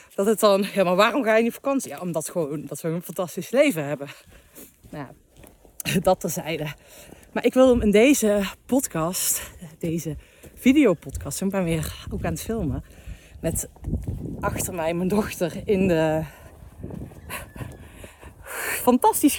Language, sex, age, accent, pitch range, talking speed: Dutch, female, 40-59, Dutch, 155-215 Hz, 140 wpm